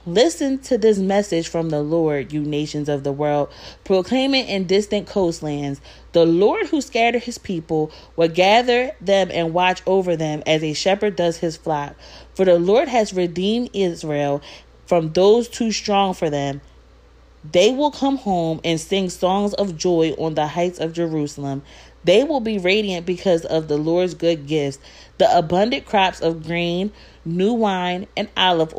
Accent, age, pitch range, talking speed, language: American, 30-49, 160-205 Hz, 165 wpm, English